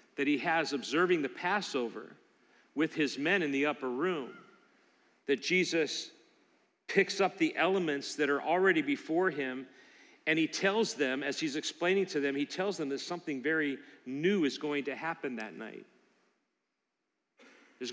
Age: 40-59